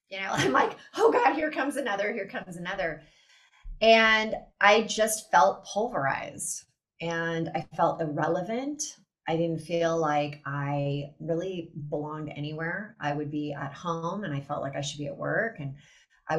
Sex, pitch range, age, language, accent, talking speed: female, 150-215 Hz, 30-49, English, American, 165 wpm